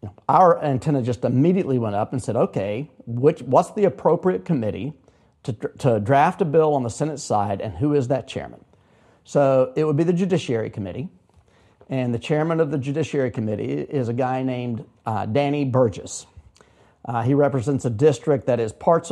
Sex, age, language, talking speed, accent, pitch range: male, 40-59, English, 180 wpm, American, 120-150 Hz